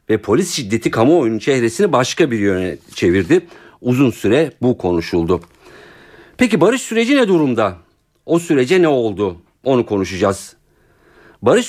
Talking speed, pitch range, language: 130 wpm, 105-165 Hz, Turkish